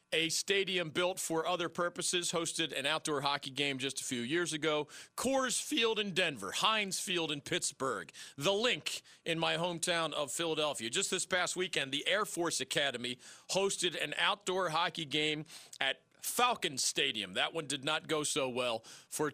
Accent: American